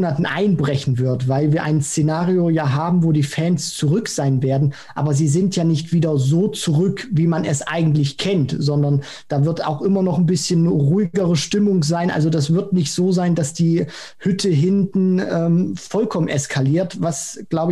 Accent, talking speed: German, 180 wpm